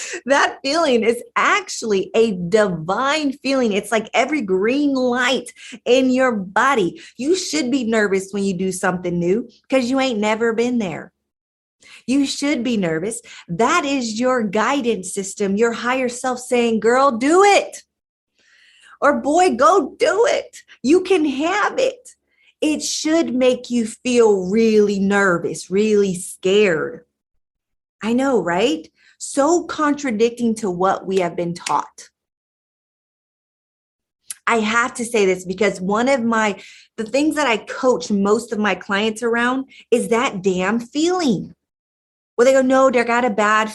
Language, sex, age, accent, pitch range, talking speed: English, female, 30-49, American, 200-265 Hz, 145 wpm